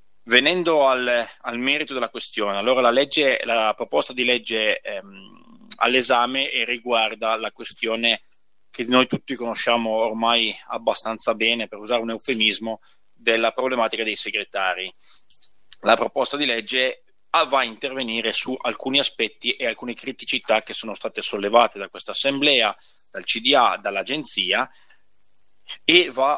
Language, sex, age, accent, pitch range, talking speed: Italian, male, 30-49, native, 110-130 Hz, 130 wpm